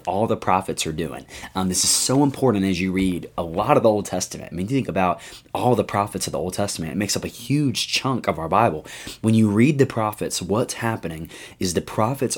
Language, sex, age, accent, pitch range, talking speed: English, male, 20-39, American, 90-115 Hz, 235 wpm